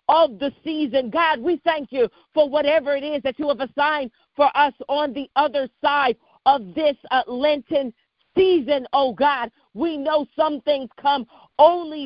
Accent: American